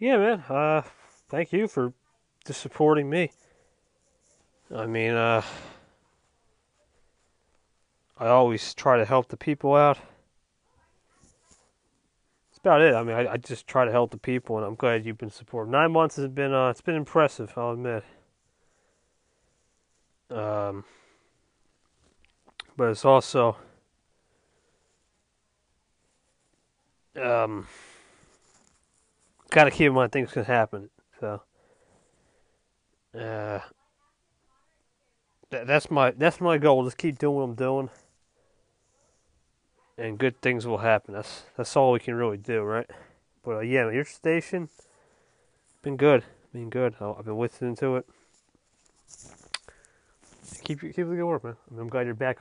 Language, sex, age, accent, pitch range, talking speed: English, male, 30-49, American, 110-140 Hz, 135 wpm